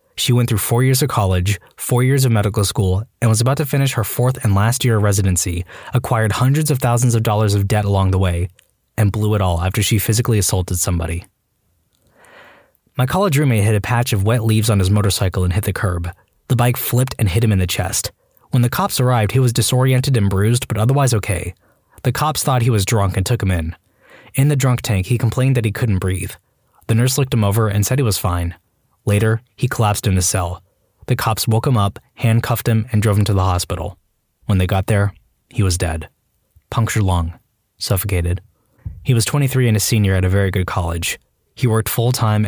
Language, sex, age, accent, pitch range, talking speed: English, male, 20-39, American, 95-125 Hz, 220 wpm